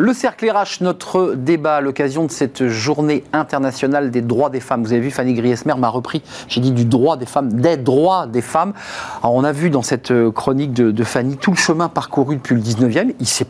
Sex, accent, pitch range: male, French, 125-170 Hz